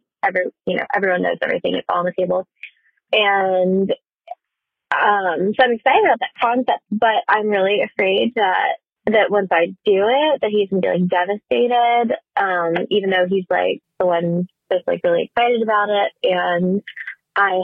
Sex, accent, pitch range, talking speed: female, American, 180-220 Hz, 165 wpm